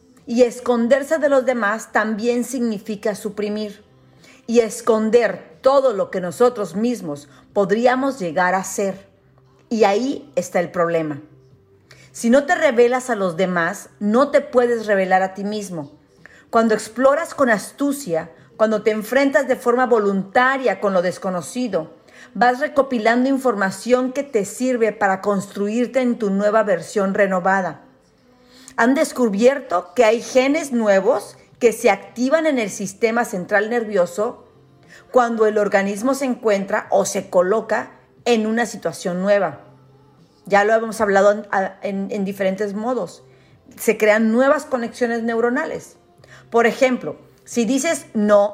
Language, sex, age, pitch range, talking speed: Spanish, female, 40-59, 195-250 Hz, 135 wpm